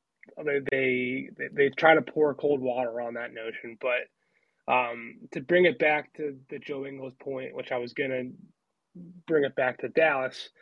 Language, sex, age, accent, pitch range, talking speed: English, male, 20-39, American, 135-155 Hz, 175 wpm